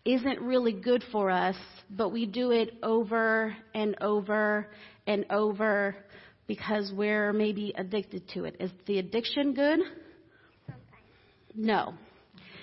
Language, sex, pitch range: English, female, 205-270 Hz